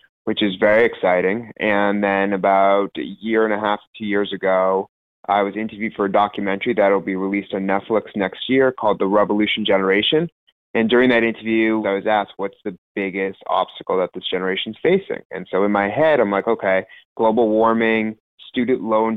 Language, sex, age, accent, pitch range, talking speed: English, male, 20-39, American, 100-115 Hz, 185 wpm